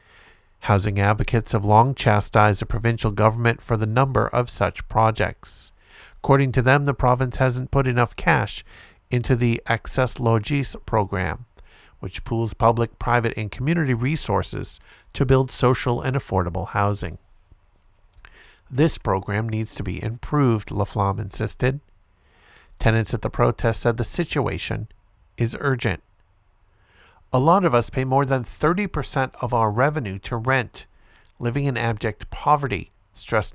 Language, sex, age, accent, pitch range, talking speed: English, male, 50-69, American, 100-130 Hz, 135 wpm